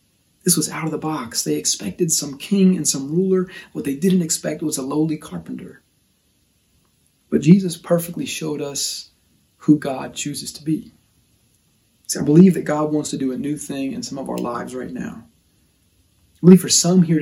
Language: English